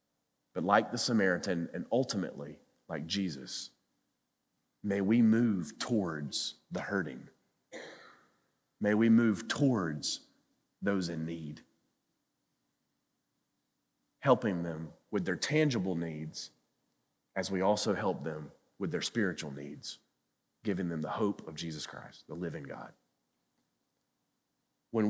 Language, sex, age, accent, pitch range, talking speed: English, male, 30-49, American, 85-115 Hz, 110 wpm